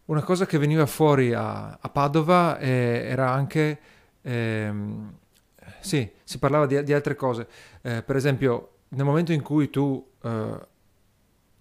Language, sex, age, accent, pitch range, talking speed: Italian, male, 40-59, native, 120-150 Hz, 140 wpm